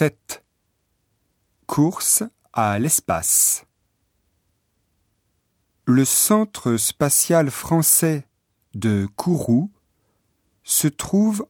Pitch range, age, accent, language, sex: 100-145 Hz, 40-59, French, Japanese, male